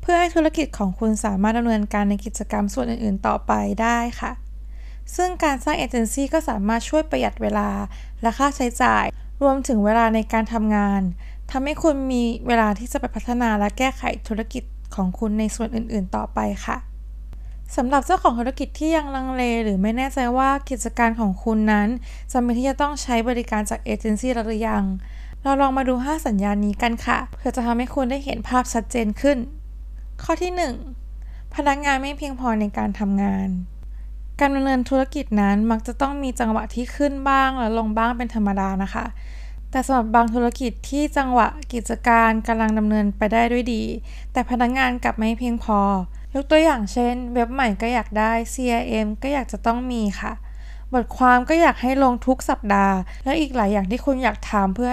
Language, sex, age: Thai, female, 20-39